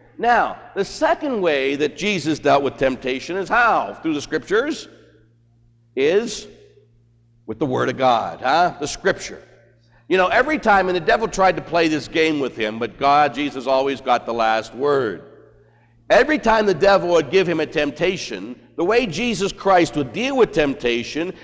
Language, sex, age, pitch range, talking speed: English, male, 60-79, 140-215 Hz, 175 wpm